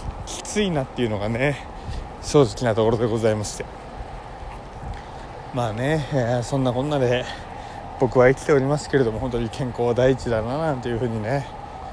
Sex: male